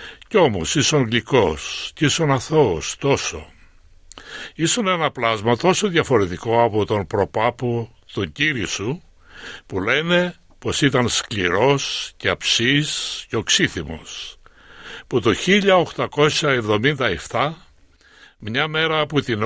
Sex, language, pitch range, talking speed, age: male, Greek, 115-155 Hz, 105 wpm, 60-79